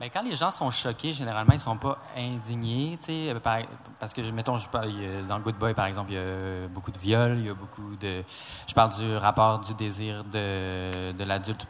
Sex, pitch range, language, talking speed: male, 100-125 Hz, French, 215 wpm